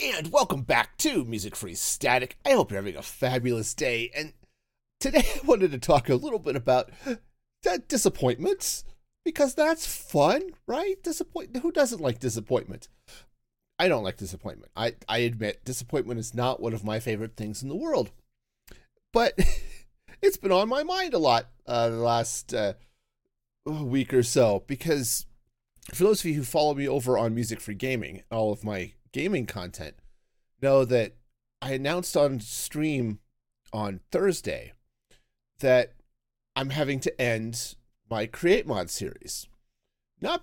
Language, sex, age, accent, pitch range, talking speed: English, male, 30-49, American, 115-155 Hz, 155 wpm